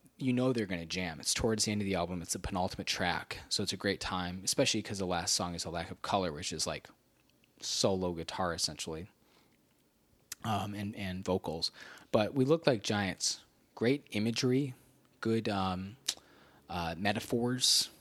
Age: 20-39